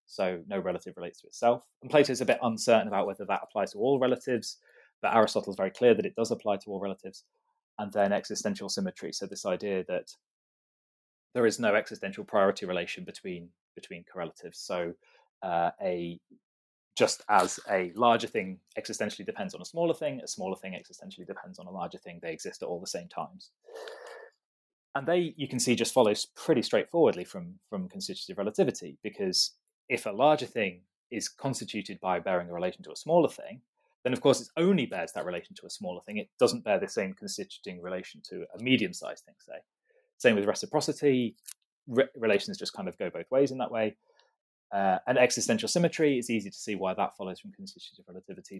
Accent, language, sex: British, English, male